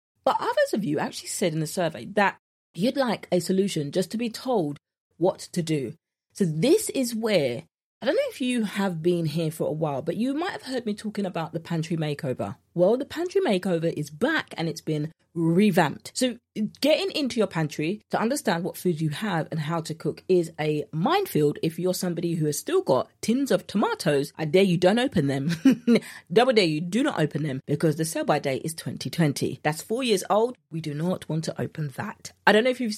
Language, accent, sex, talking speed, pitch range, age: English, British, female, 220 wpm, 160-215 Hz, 30-49